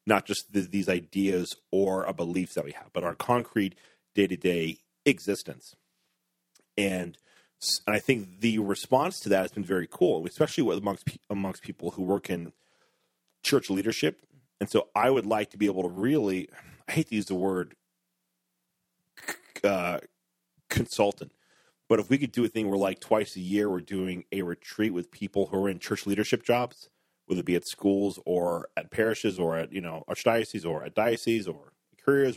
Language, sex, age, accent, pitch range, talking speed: English, male, 40-59, American, 90-110 Hz, 180 wpm